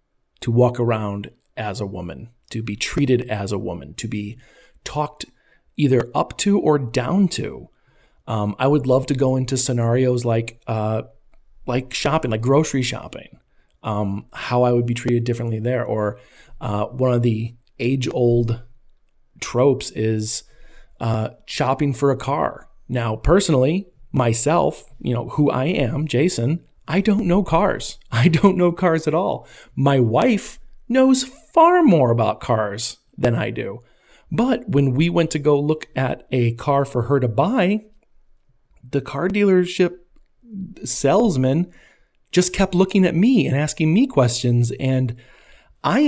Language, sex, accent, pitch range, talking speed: English, male, American, 120-160 Hz, 150 wpm